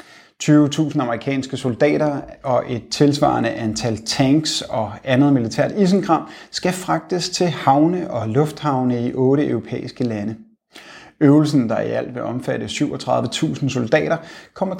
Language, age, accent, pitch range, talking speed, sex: Danish, 30-49, native, 125-165 Hz, 125 wpm, male